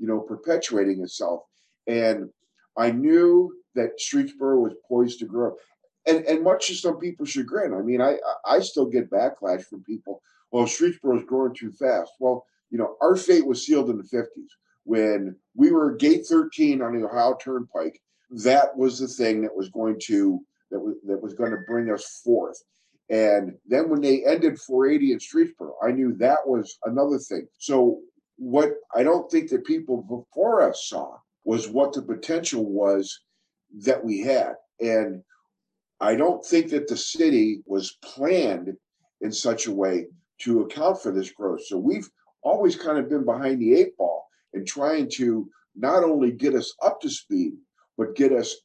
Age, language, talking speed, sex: 50-69, English, 180 wpm, male